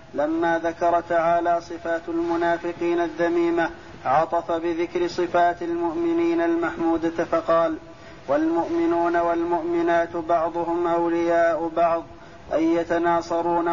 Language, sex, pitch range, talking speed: Arabic, male, 170-175 Hz, 85 wpm